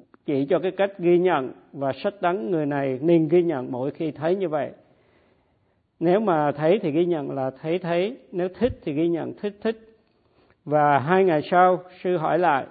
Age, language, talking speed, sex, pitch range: 50-69, Vietnamese, 200 wpm, male, 140-175 Hz